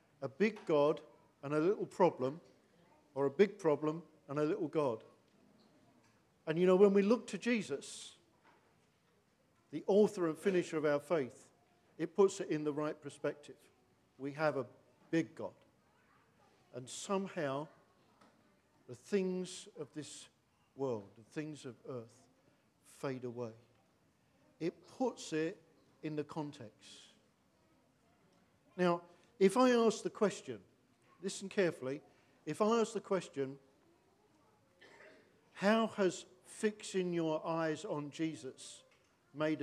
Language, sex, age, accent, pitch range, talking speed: English, male, 50-69, British, 135-185 Hz, 125 wpm